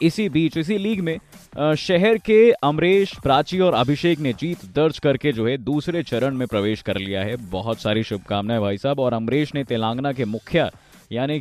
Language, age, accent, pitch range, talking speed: Hindi, 20-39, native, 130-175 Hz, 190 wpm